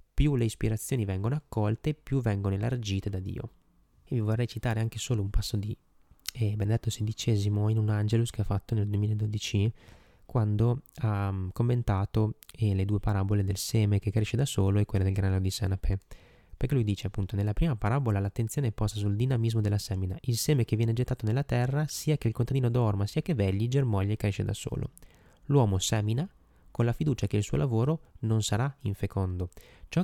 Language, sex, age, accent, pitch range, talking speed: Italian, male, 20-39, native, 100-125 Hz, 190 wpm